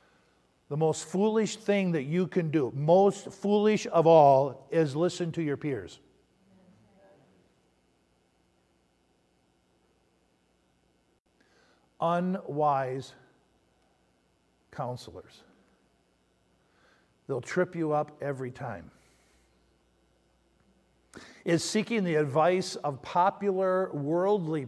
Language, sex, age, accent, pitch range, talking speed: English, male, 50-69, American, 145-195 Hz, 80 wpm